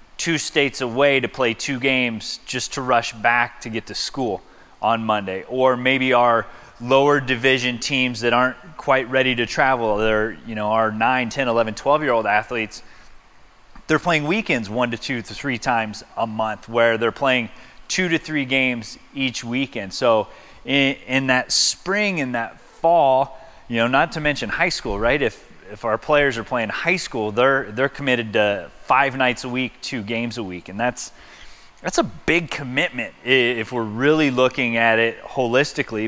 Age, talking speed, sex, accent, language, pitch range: 30-49, 180 wpm, male, American, English, 115-140 Hz